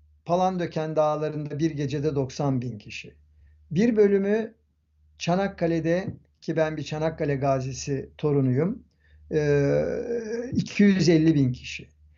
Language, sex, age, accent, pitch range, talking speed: Turkish, male, 60-79, native, 115-195 Hz, 95 wpm